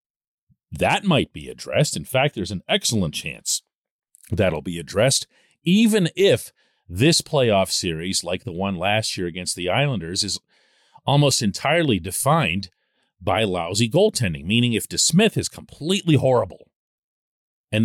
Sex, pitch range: male, 95-140 Hz